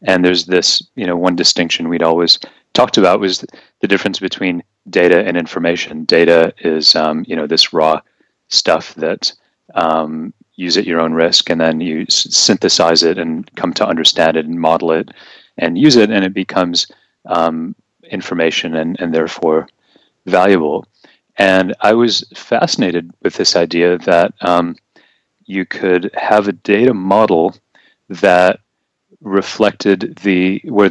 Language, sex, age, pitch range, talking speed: English, male, 30-49, 85-95 Hz, 150 wpm